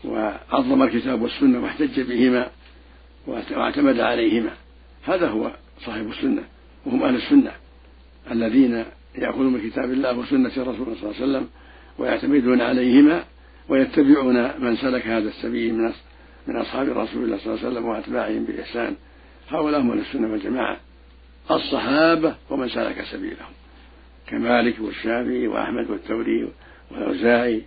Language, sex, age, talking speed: Arabic, male, 60-79, 120 wpm